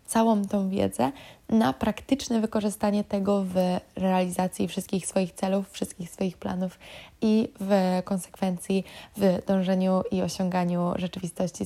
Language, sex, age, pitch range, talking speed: Polish, female, 20-39, 185-205 Hz, 120 wpm